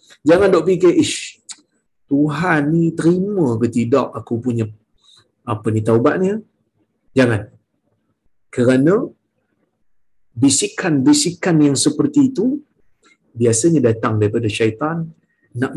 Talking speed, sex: 105 wpm, male